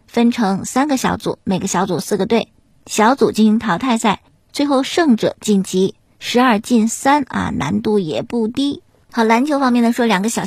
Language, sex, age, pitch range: Chinese, male, 50-69, 205-245 Hz